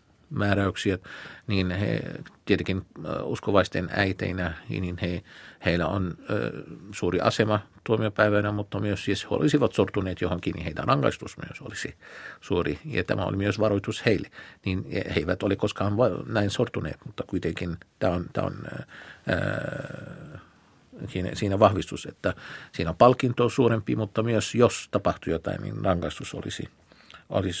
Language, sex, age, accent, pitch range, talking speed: Finnish, male, 50-69, native, 90-105 Hz, 140 wpm